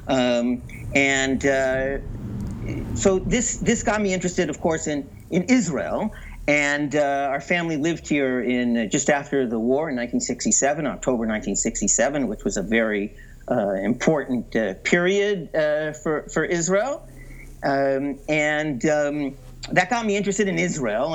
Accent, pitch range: American, 135-195 Hz